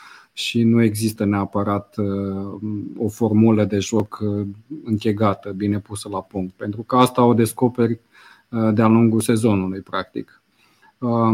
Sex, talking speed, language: male, 115 wpm, Romanian